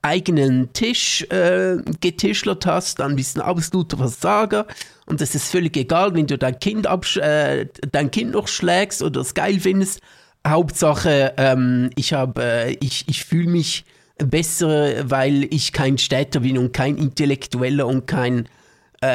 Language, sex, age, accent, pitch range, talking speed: German, male, 50-69, German, 135-180 Hz, 155 wpm